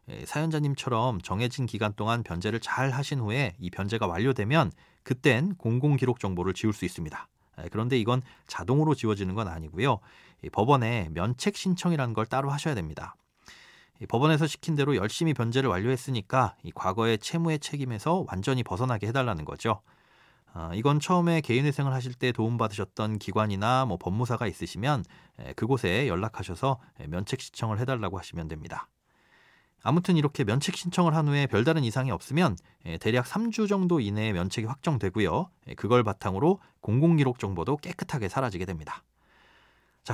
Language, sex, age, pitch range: Korean, male, 40-59, 105-150 Hz